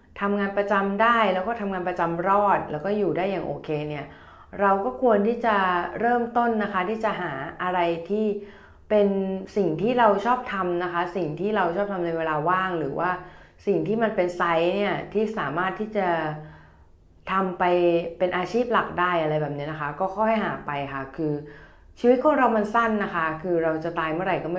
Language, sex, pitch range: Thai, female, 160-205 Hz